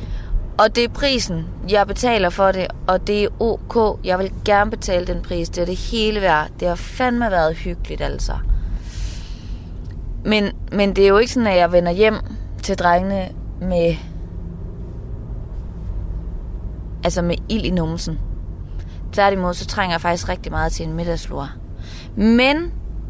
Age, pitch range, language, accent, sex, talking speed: 20-39, 160-220 Hz, Danish, native, female, 155 wpm